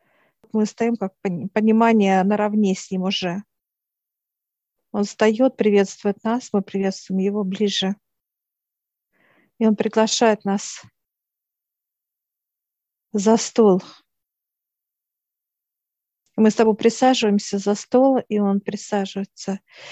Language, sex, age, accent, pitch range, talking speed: Russian, female, 50-69, native, 200-225 Hz, 95 wpm